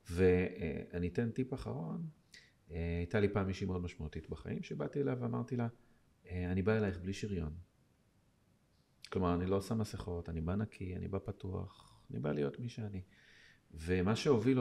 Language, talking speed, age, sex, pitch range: Hebrew, 155 wpm, 40-59, male, 90-110 Hz